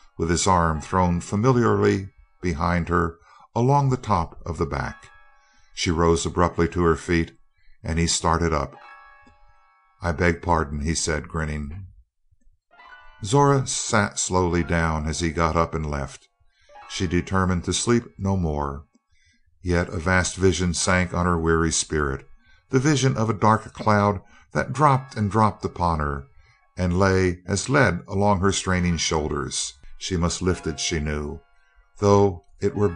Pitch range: 85-110 Hz